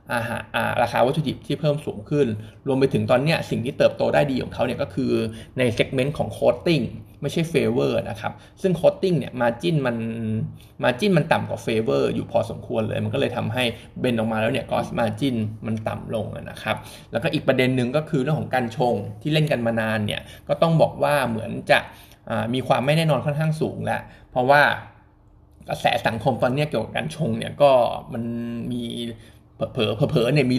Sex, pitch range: male, 115-145 Hz